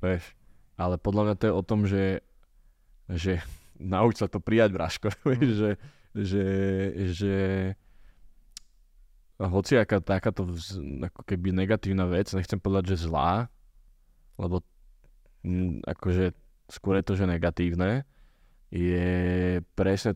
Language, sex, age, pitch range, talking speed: Slovak, male, 20-39, 85-100 Hz, 115 wpm